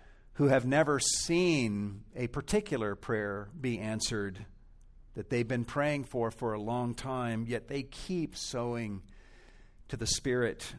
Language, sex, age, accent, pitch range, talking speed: English, male, 50-69, American, 110-140 Hz, 140 wpm